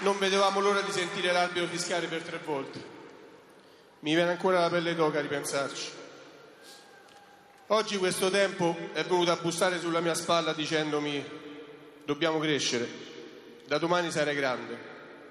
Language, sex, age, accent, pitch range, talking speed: Italian, male, 40-59, native, 150-180 Hz, 135 wpm